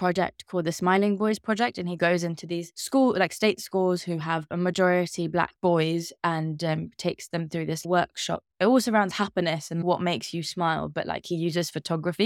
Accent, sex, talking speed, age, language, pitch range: British, female, 205 wpm, 20-39, English, 160-180 Hz